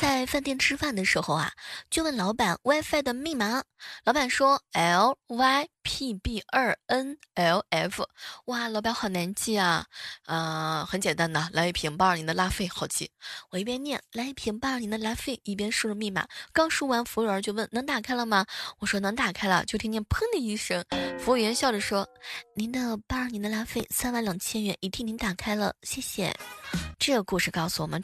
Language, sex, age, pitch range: Chinese, female, 20-39, 185-250 Hz